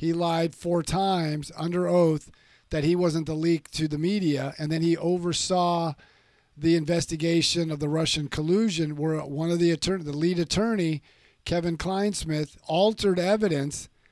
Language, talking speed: English, 150 wpm